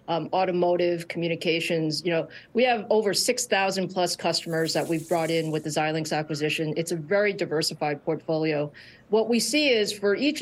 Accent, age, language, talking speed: American, 40-59, English, 175 wpm